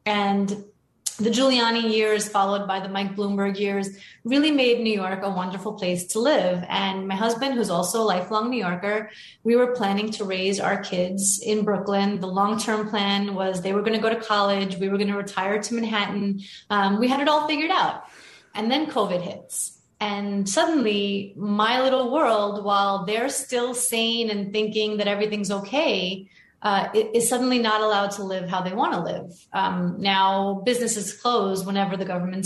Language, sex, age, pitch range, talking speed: English, female, 30-49, 190-225 Hz, 185 wpm